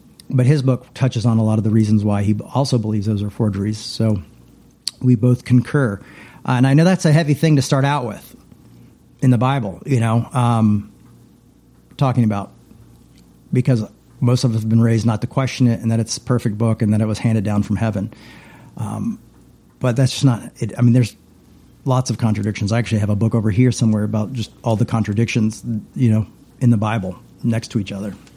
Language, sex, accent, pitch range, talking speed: English, male, American, 110-130 Hz, 210 wpm